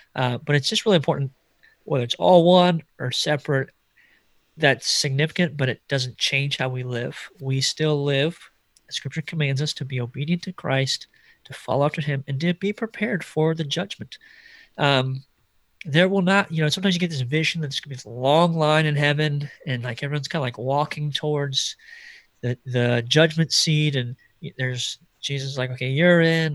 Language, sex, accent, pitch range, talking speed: English, male, American, 130-160 Hz, 190 wpm